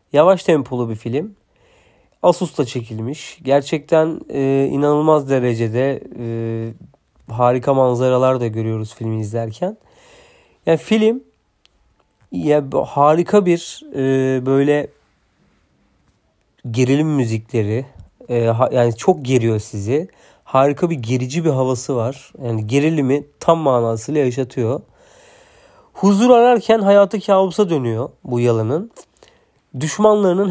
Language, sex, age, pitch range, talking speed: Turkish, male, 40-59, 120-165 Hz, 100 wpm